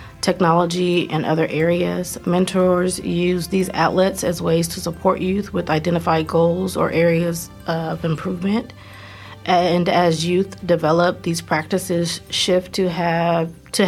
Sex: female